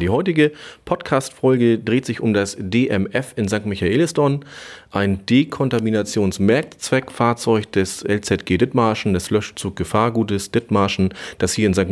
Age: 30-49